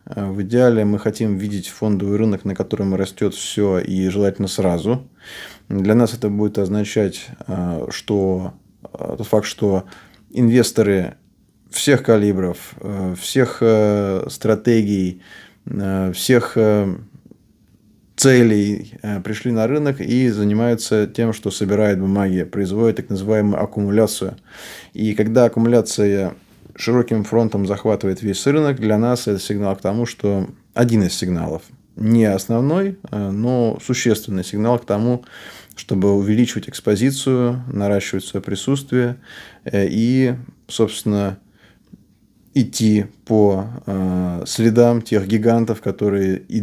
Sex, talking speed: male, 105 wpm